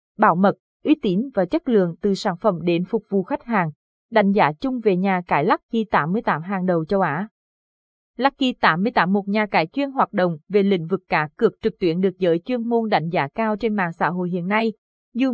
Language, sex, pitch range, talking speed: Vietnamese, female, 185-235 Hz, 220 wpm